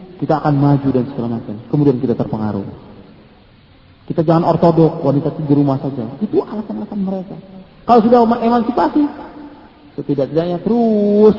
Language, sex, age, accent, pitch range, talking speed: English, male, 40-59, Indonesian, 150-210 Hz, 130 wpm